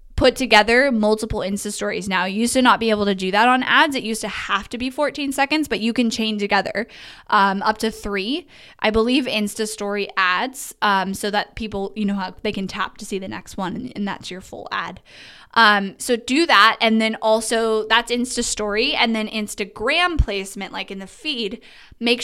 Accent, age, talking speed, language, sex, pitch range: American, 10-29, 215 wpm, English, female, 195-235 Hz